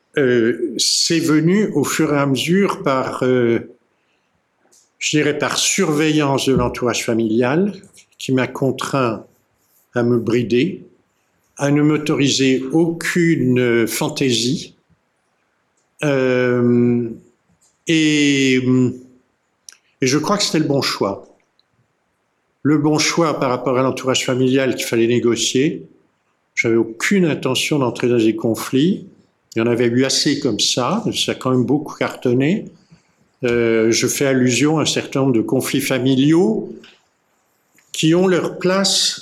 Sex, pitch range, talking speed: male, 125-155 Hz, 130 wpm